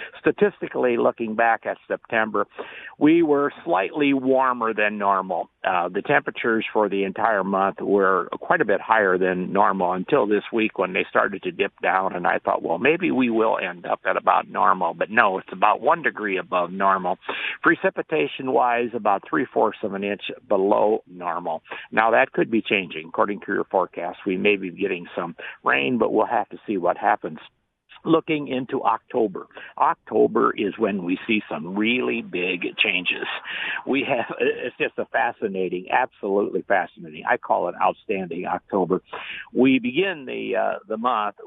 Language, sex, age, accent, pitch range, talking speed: English, male, 60-79, American, 100-140 Hz, 170 wpm